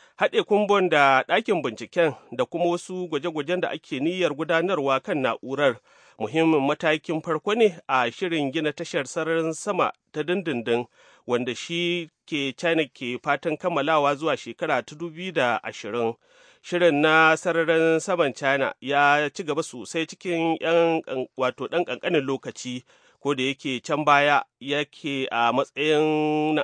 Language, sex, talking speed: English, male, 135 wpm